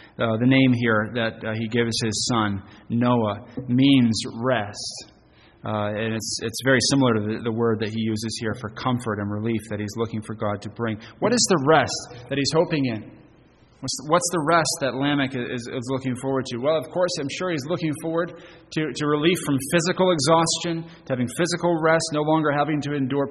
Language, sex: English, male